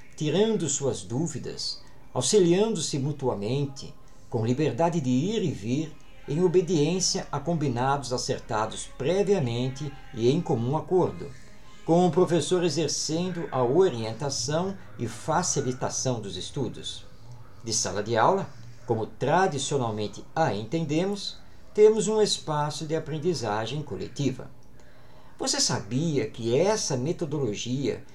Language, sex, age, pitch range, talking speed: Portuguese, male, 50-69, 130-170 Hz, 105 wpm